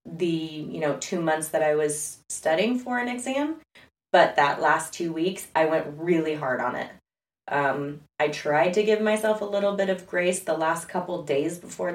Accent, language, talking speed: American, English, 195 wpm